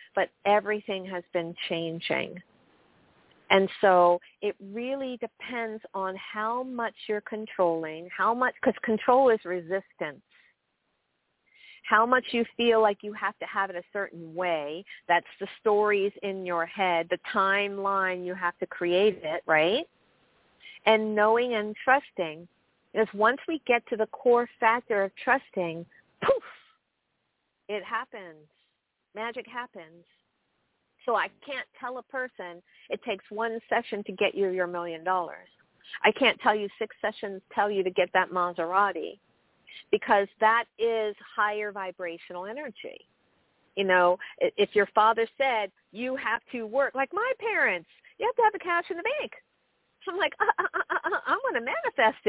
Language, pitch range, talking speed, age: English, 185-255 Hz, 150 wpm, 50-69